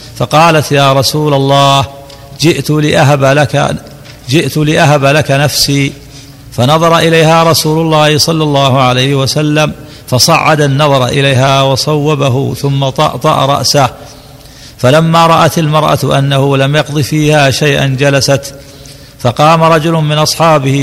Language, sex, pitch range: Arabic, male, 135-150 Hz